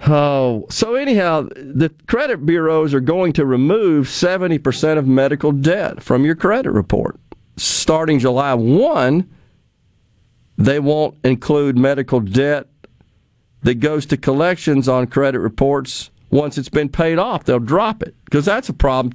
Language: English